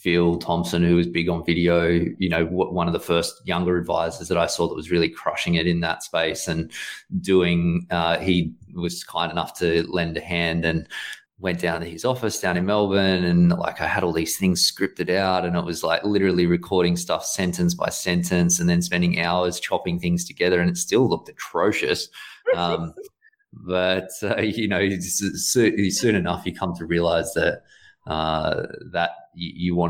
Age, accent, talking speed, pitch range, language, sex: 20-39, Australian, 190 wpm, 80-95 Hz, English, male